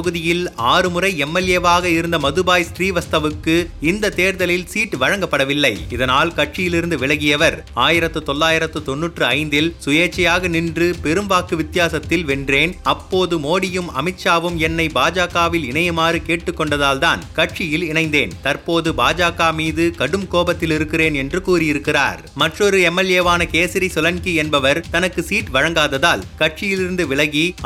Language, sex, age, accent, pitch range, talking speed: Tamil, male, 30-49, native, 155-180 Hz, 105 wpm